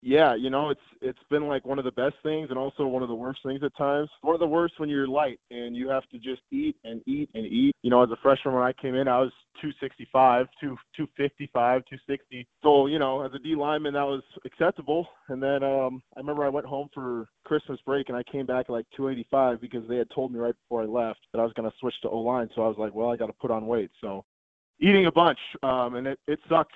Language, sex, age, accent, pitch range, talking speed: English, male, 20-39, American, 120-140 Hz, 260 wpm